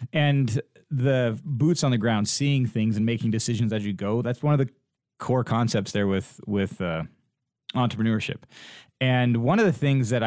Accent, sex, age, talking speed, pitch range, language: American, male, 30-49, 180 wpm, 105-130 Hz, English